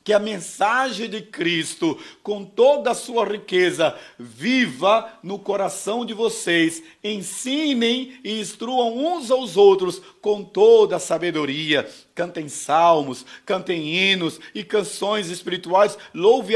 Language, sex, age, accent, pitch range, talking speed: Portuguese, male, 50-69, Brazilian, 170-230 Hz, 120 wpm